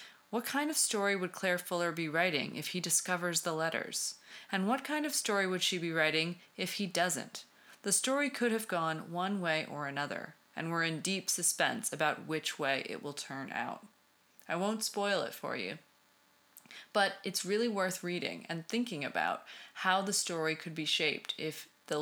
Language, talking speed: English, 190 wpm